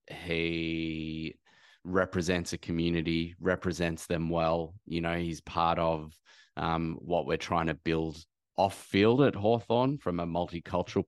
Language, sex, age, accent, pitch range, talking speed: English, male, 20-39, Australian, 80-90 Hz, 135 wpm